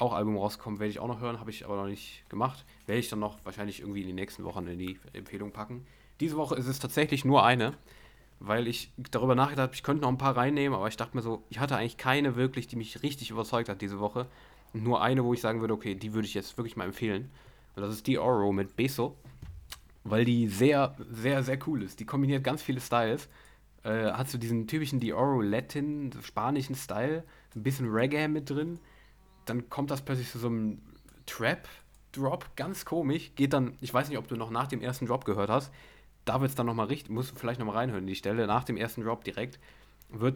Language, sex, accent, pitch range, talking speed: German, male, German, 105-130 Hz, 230 wpm